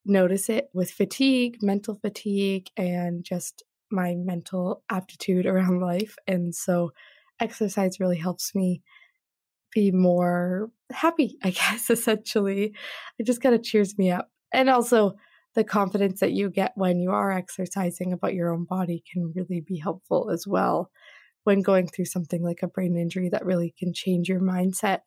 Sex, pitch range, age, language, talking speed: female, 180-215 Hz, 20-39, English, 160 wpm